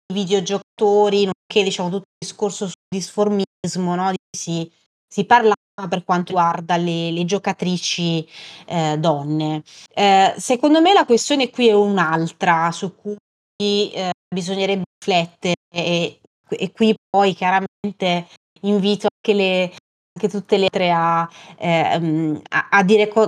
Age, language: 20-39, Italian